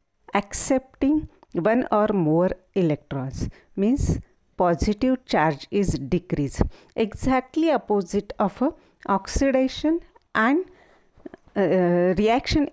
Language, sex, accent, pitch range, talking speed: Marathi, female, native, 175-250 Hz, 85 wpm